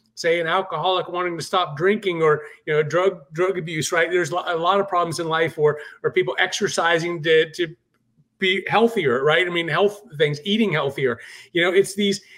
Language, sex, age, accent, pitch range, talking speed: English, male, 30-49, American, 170-200 Hz, 195 wpm